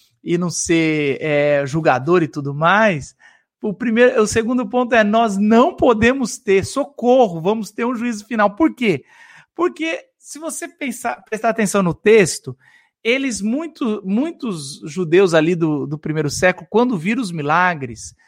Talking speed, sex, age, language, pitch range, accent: 155 wpm, male, 50-69, Portuguese, 175-245 Hz, Brazilian